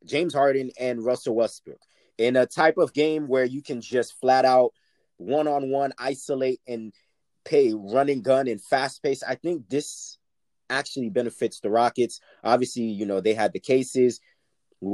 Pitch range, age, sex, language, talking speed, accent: 120-155 Hz, 30-49, male, English, 160 wpm, American